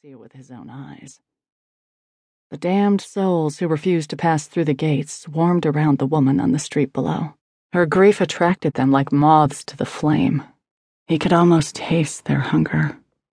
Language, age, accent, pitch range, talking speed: English, 30-49, American, 145-180 Hz, 165 wpm